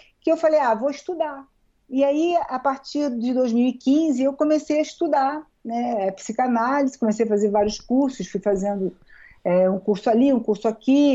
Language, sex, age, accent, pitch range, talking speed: Portuguese, female, 50-69, Brazilian, 210-275 Hz, 170 wpm